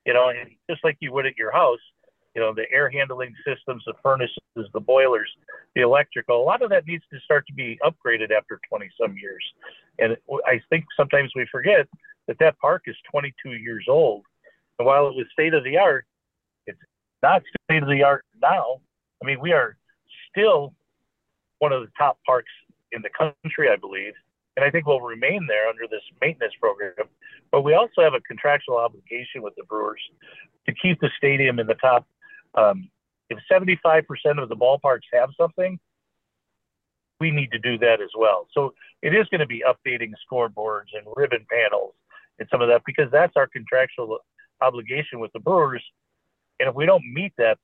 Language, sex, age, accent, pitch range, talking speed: English, male, 50-69, American, 125-185 Hz, 190 wpm